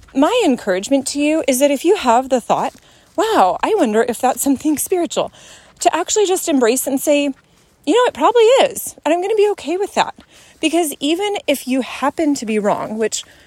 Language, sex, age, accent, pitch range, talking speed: English, female, 30-49, American, 210-285 Hz, 205 wpm